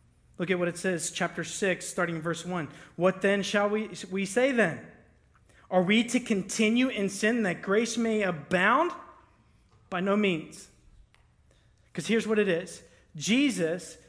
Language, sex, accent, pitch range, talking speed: English, male, American, 185-275 Hz, 160 wpm